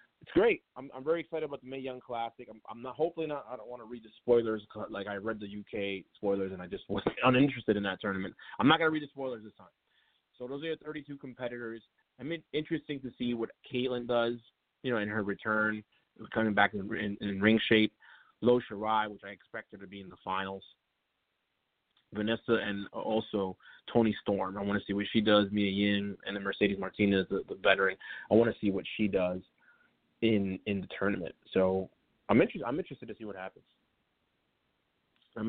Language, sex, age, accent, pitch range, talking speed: English, male, 20-39, American, 100-125 Hz, 210 wpm